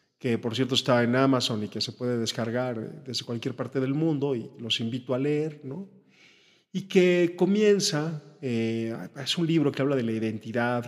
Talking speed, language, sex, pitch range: 190 wpm, Spanish, male, 115-135 Hz